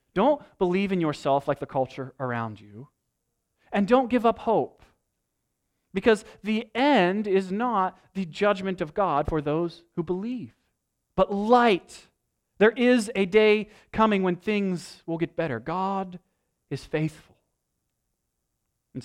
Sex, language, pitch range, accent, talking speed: male, English, 125-195 Hz, American, 135 wpm